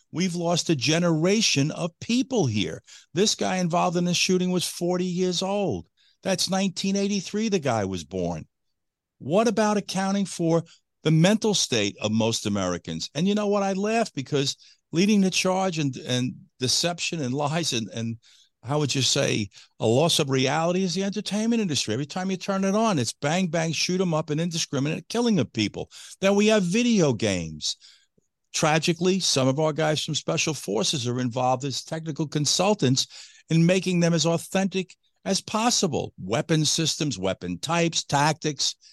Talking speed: 170 wpm